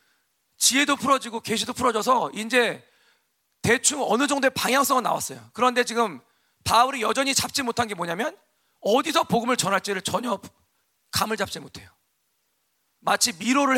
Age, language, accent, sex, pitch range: 40-59, Korean, native, male, 205-260 Hz